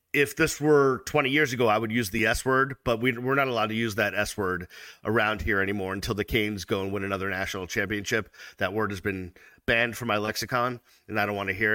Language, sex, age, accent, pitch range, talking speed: English, male, 40-59, American, 100-145 Hz, 240 wpm